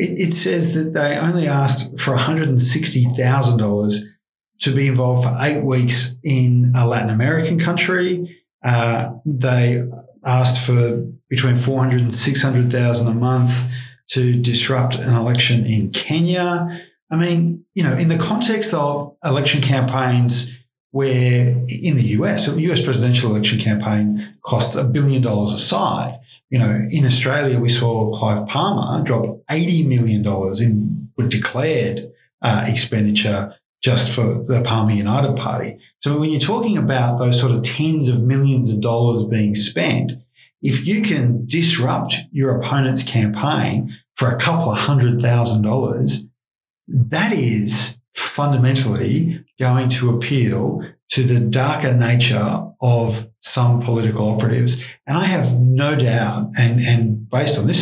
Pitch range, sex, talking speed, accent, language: 120-145 Hz, male, 140 wpm, Australian, English